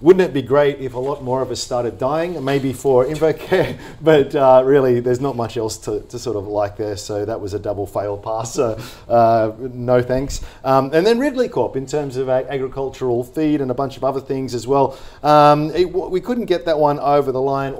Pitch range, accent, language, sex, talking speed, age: 115-145 Hz, Australian, English, male, 225 wpm, 40-59